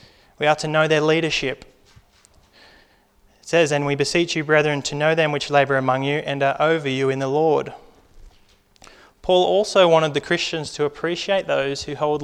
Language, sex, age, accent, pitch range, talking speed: English, male, 20-39, Australian, 135-160 Hz, 180 wpm